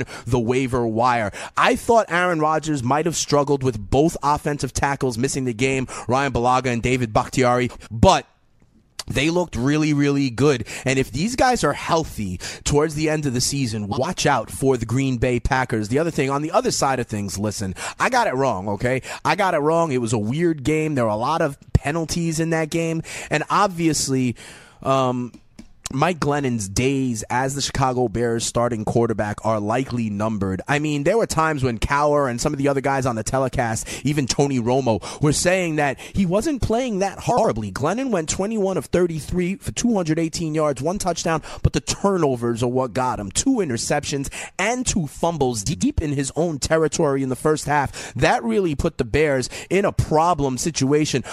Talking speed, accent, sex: 190 wpm, American, male